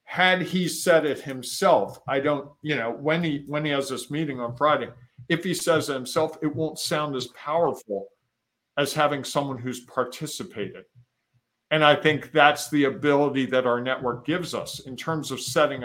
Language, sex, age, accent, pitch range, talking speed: English, male, 50-69, American, 130-160 Hz, 180 wpm